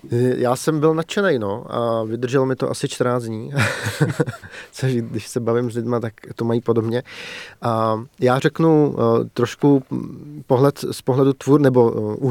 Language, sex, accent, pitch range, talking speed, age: Czech, male, native, 115-135 Hz, 160 wpm, 30-49